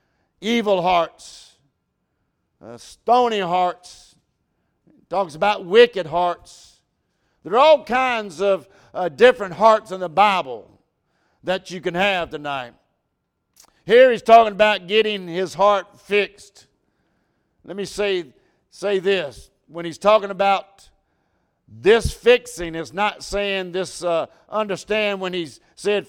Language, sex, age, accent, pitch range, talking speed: English, male, 60-79, American, 170-215 Hz, 125 wpm